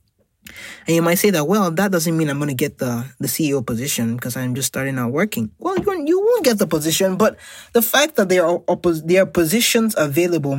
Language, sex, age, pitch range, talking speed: English, male, 20-39, 135-175 Hz, 210 wpm